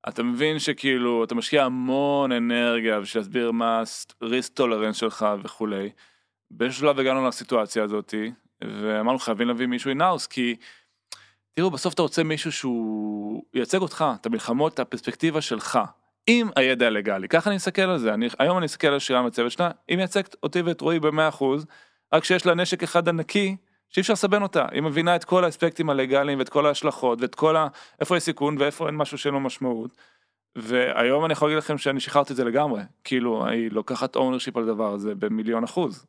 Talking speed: 180 wpm